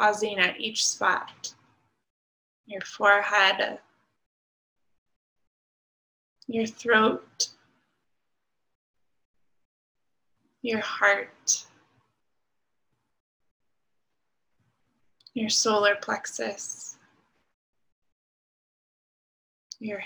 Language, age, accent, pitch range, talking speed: English, 20-39, American, 205-235 Hz, 40 wpm